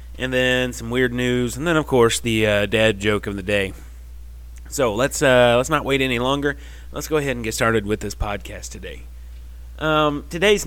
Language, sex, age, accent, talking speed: English, male, 30-49, American, 200 wpm